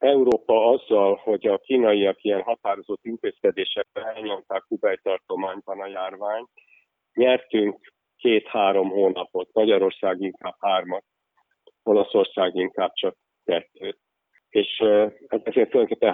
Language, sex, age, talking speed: Hungarian, male, 50-69, 95 wpm